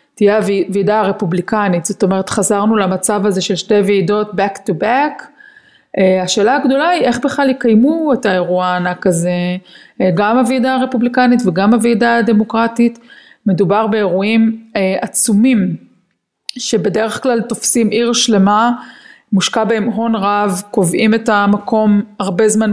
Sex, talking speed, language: female, 130 wpm, Hebrew